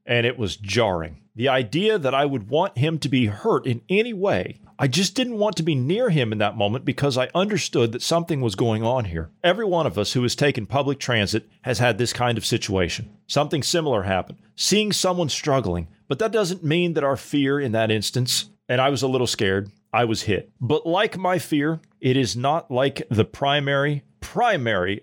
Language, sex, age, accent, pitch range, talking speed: English, male, 40-59, American, 110-145 Hz, 210 wpm